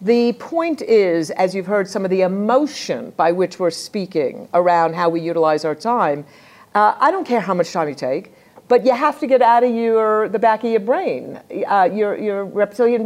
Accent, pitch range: American, 175-245 Hz